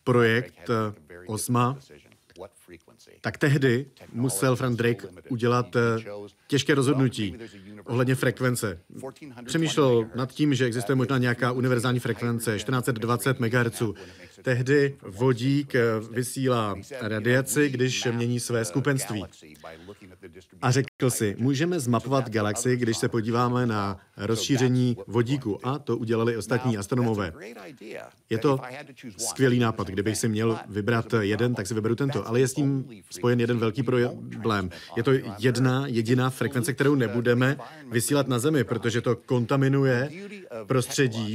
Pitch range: 115-135 Hz